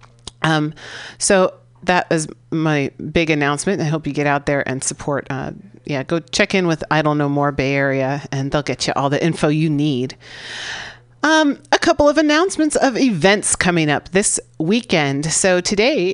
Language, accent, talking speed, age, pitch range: English, American, 180 wpm, 40-59, 145-195 Hz